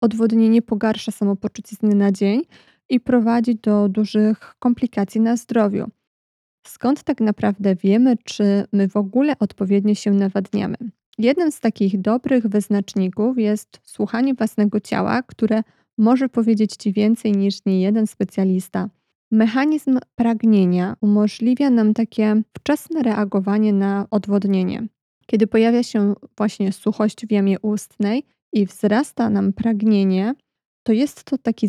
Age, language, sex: 20-39, Polish, female